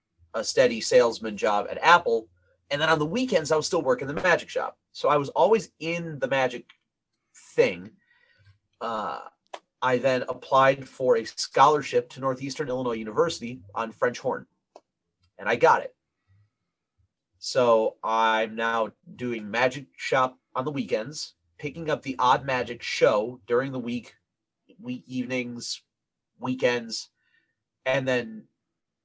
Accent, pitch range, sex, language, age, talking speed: American, 110-165 Hz, male, English, 30-49, 140 wpm